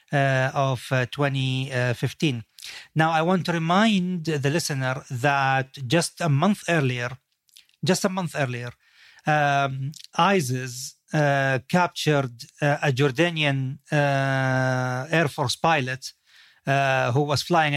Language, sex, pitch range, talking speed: English, male, 135-165 Hz, 120 wpm